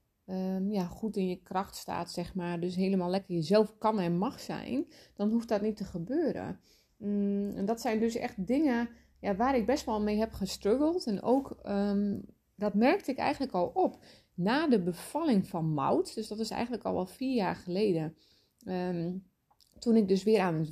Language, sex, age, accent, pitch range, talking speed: Dutch, female, 30-49, Dutch, 185-240 Hz, 195 wpm